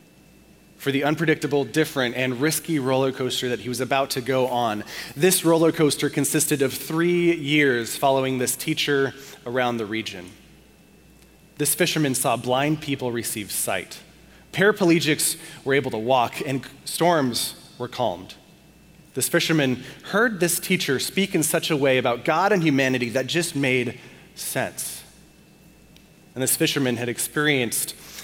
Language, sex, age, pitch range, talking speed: English, male, 30-49, 130-165 Hz, 140 wpm